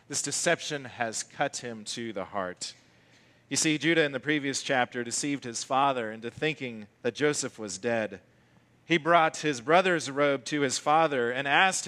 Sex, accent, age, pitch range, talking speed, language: male, American, 40-59, 115-170 Hz, 170 wpm, English